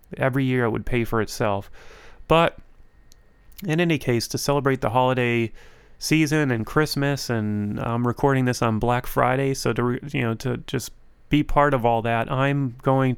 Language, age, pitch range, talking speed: English, 30-49, 110-130 Hz, 180 wpm